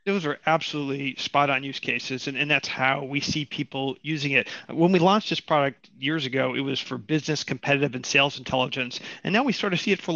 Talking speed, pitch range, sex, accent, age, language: 230 wpm, 135-160 Hz, male, American, 40-59, English